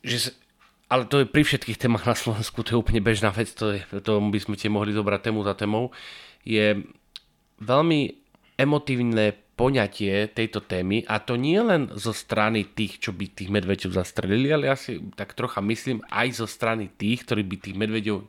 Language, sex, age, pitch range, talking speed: Slovak, male, 30-49, 105-130 Hz, 190 wpm